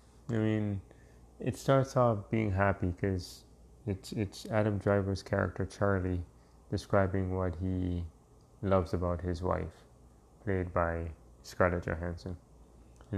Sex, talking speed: male, 120 wpm